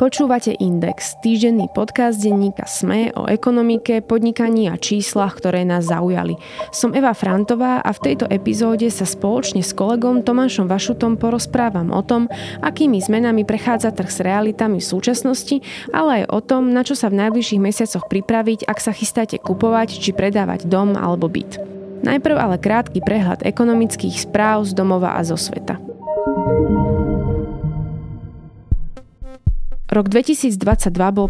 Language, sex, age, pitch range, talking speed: Slovak, female, 20-39, 195-240 Hz, 140 wpm